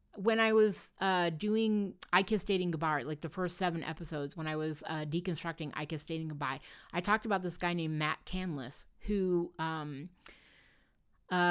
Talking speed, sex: 175 wpm, female